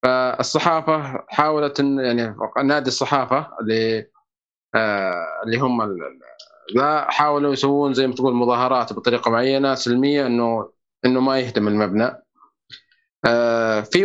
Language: Arabic